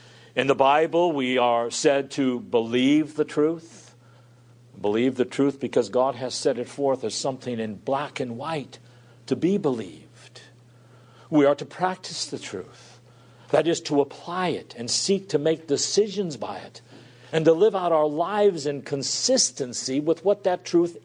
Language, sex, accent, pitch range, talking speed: English, male, American, 125-190 Hz, 165 wpm